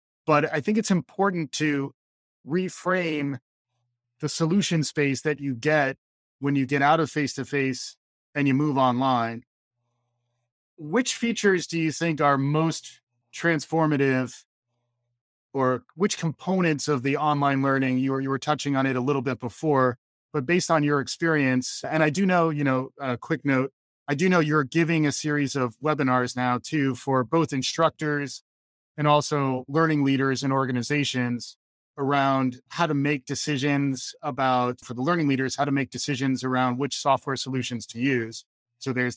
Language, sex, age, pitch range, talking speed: English, male, 30-49, 130-155 Hz, 160 wpm